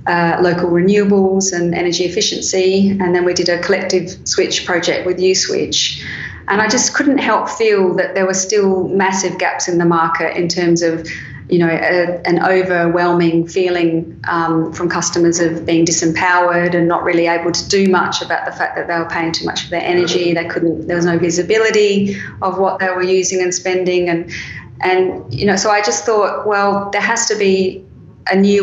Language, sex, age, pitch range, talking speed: English, female, 30-49, 170-190 Hz, 195 wpm